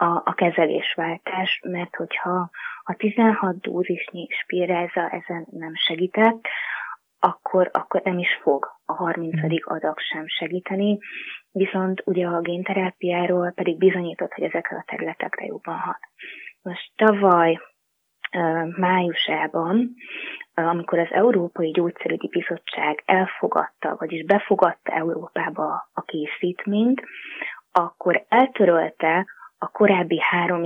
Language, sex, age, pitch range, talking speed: Hungarian, female, 20-39, 165-200 Hz, 100 wpm